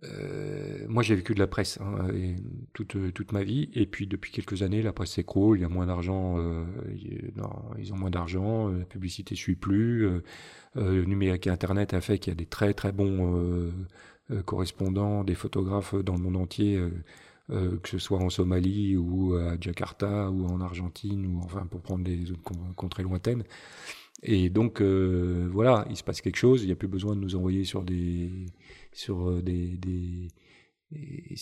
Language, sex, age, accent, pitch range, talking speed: French, male, 40-59, French, 90-105 Hz, 195 wpm